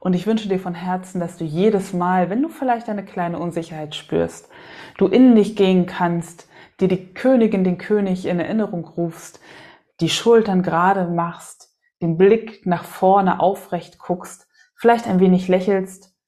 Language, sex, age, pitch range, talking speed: German, female, 20-39, 170-210 Hz, 160 wpm